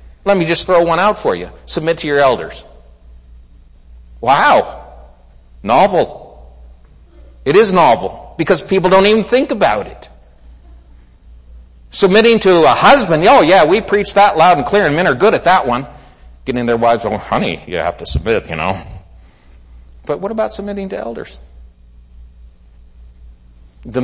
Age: 60-79